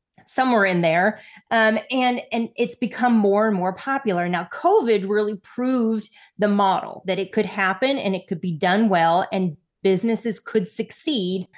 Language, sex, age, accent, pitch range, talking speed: English, female, 30-49, American, 180-225 Hz, 165 wpm